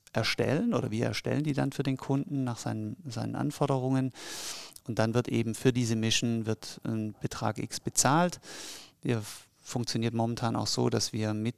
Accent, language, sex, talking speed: German, German, male, 170 wpm